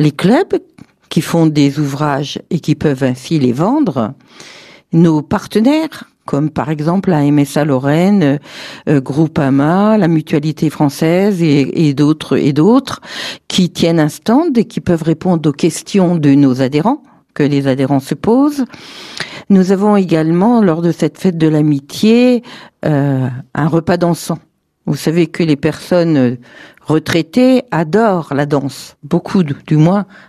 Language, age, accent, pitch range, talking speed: French, 50-69, French, 150-200 Hz, 145 wpm